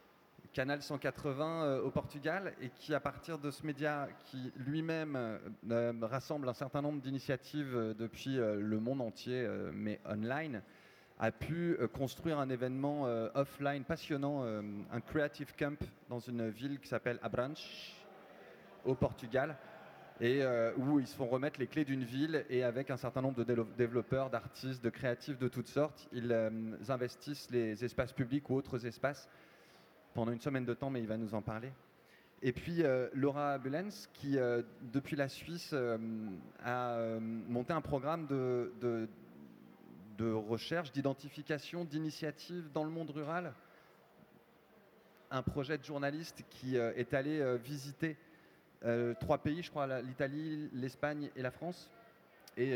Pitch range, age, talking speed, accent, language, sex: 120-145 Hz, 30-49, 160 wpm, French, French, male